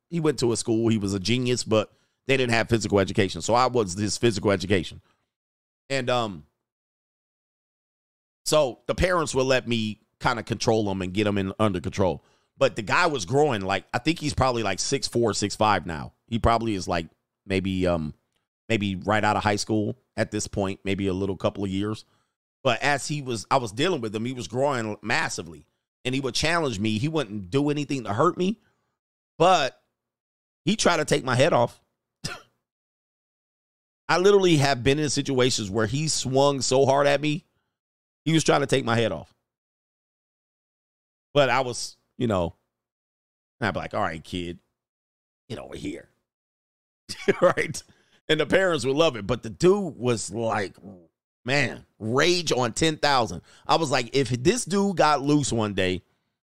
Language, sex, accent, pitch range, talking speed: English, male, American, 100-140 Hz, 180 wpm